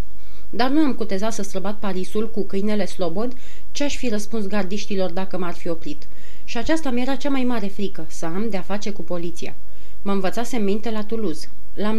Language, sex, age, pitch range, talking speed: Romanian, female, 30-49, 190-230 Hz, 190 wpm